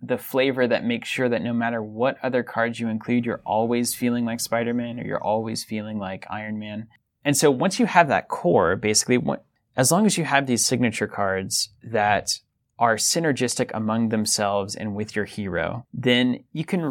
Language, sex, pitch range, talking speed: English, male, 110-130 Hz, 190 wpm